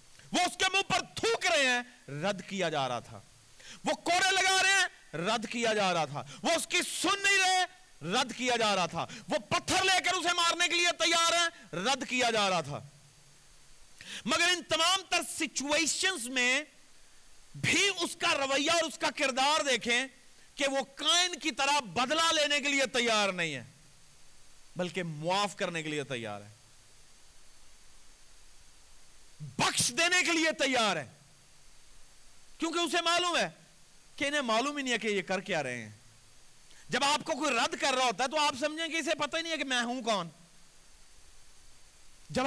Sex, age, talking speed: male, 50-69, 180 wpm